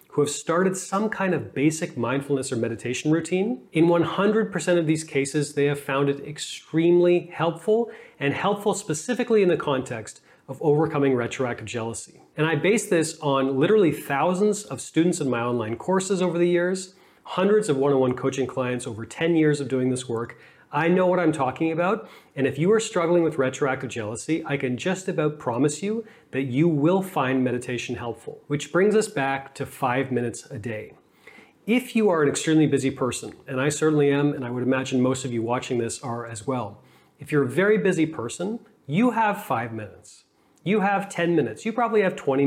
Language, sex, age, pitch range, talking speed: English, male, 30-49, 130-180 Hz, 190 wpm